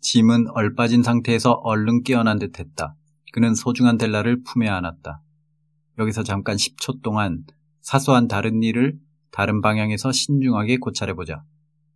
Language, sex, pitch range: Korean, male, 110-150 Hz